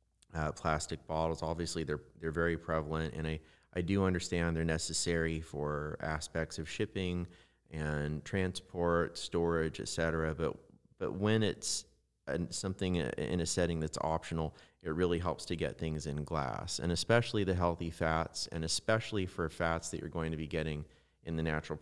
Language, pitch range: English, 80-90 Hz